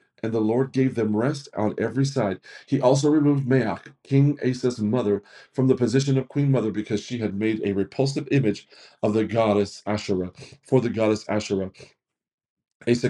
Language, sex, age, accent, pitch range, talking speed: English, male, 40-59, American, 105-135 Hz, 175 wpm